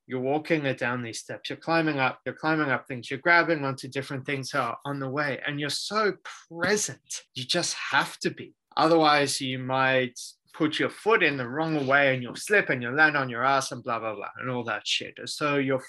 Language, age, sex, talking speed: English, 20-39, male, 225 wpm